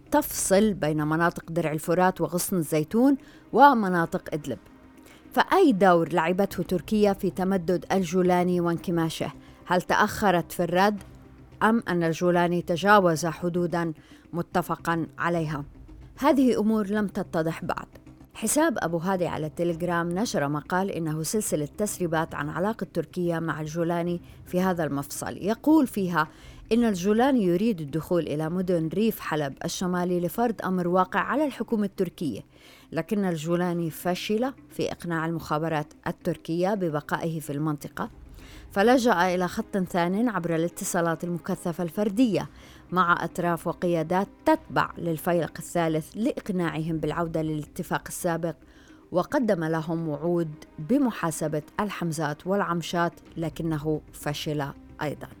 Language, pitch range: Arabic, 160-195 Hz